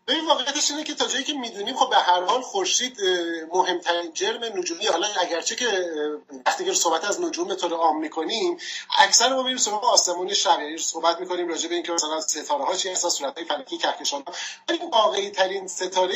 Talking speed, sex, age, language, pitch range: 180 wpm, male, 30-49, Persian, 170-255 Hz